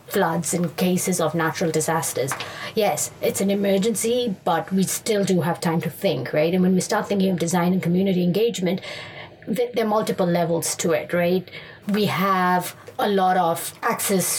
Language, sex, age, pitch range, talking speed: English, female, 30-49, 165-195 Hz, 175 wpm